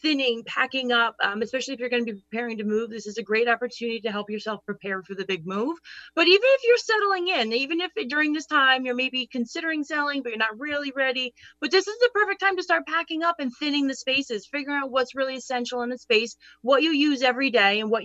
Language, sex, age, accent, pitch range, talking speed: English, female, 30-49, American, 230-295 Hz, 250 wpm